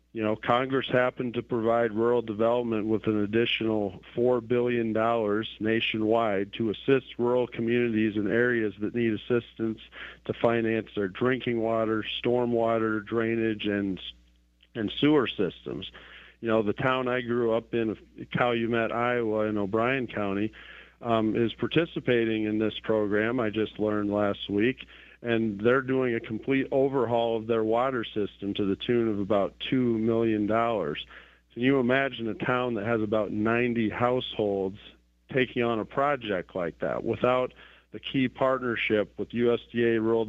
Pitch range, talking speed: 105-120 Hz, 145 wpm